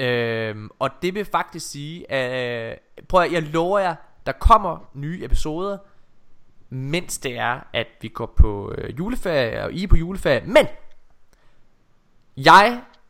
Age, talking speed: 20-39, 135 wpm